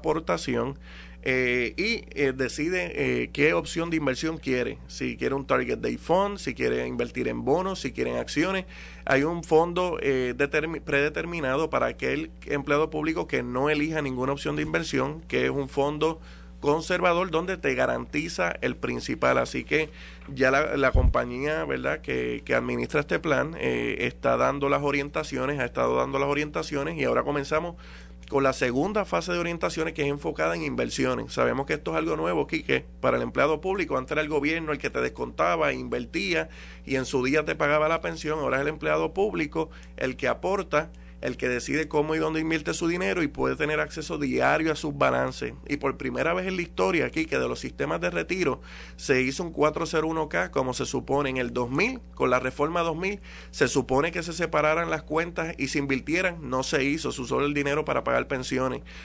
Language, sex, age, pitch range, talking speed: Spanish, male, 30-49, 125-160 Hz, 190 wpm